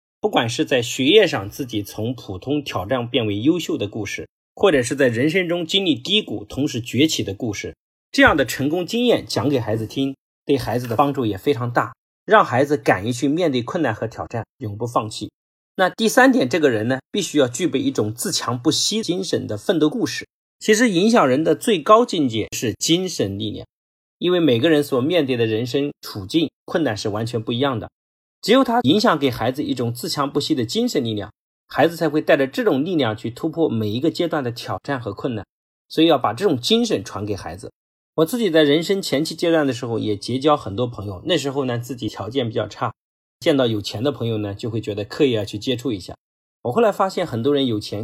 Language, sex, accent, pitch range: Chinese, male, native, 110-155 Hz